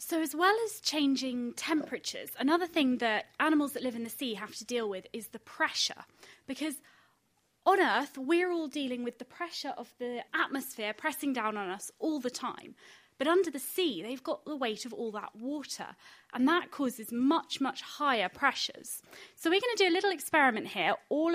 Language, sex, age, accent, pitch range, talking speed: English, female, 20-39, British, 235-320 Hz, 195 wpm